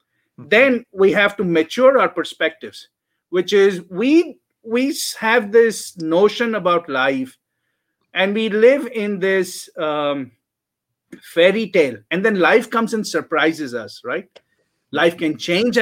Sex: male